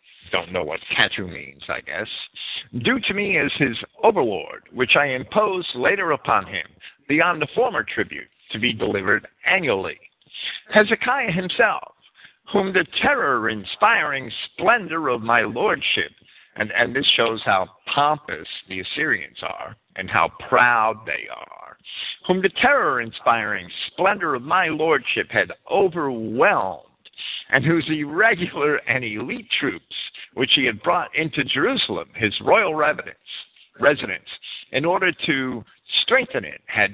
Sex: male